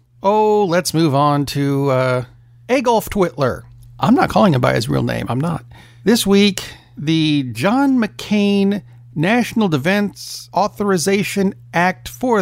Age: 50-69